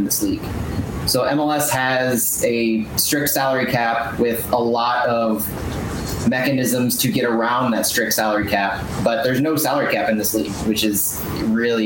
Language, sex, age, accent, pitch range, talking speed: English, male, 30-49, American, 110-130 Hz, 160 wpm